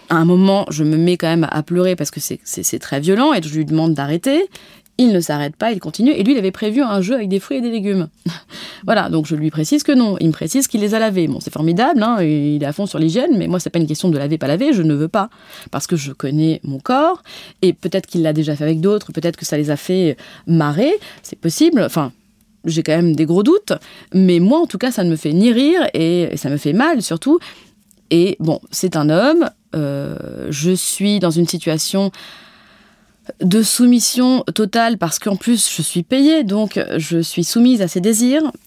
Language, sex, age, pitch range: French, female, 20-39, 160-225 Hz